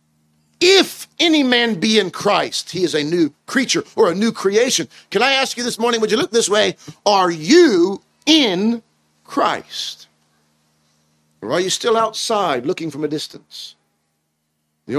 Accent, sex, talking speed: American, male, 160 wpm